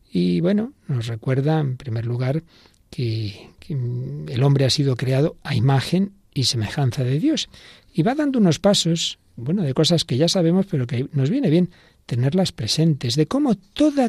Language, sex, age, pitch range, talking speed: Spanish, male, 60-79, 120-170 Hz, 175 wpm